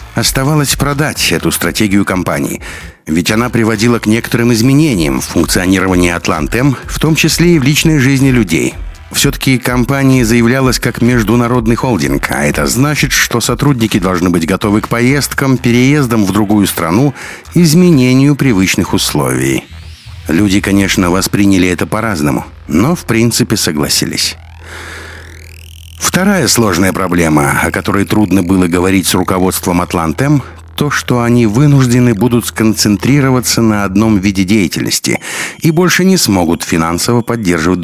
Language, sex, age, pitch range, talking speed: Russian, male, 60-79, 90-130 Hz, 130 wpm